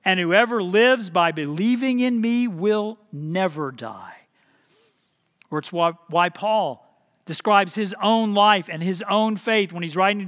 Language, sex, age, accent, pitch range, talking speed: English, male, 40-59, American, 190-280 Hz, 150 wpm